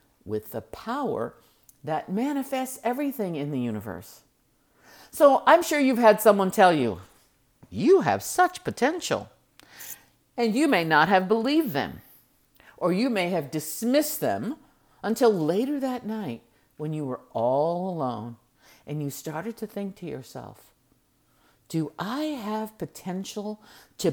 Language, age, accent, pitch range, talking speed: English, 50-69, American, 145-235 Hz, 135 wpm